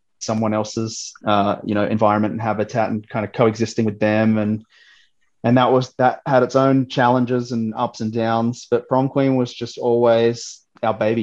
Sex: male